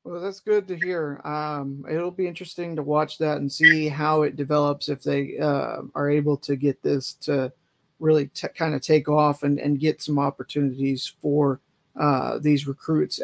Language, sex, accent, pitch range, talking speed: English, male, American, 140-160 Hz, 180 wpm